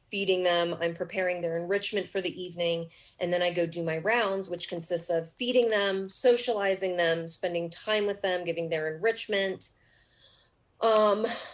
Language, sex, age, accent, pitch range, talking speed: English, female, 30-49, American, 170-200 Hz, 160 wpm